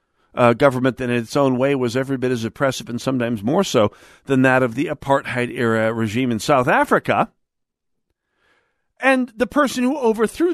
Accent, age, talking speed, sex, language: American, 50-69, 170 wpm, male, English